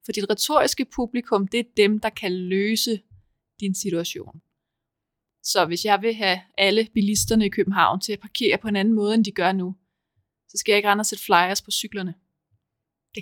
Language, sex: Danish, female